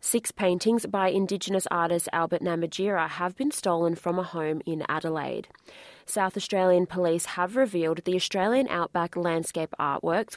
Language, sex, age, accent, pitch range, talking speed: English, female, 20-39, Australian, 165-195 Hz, 145 wpm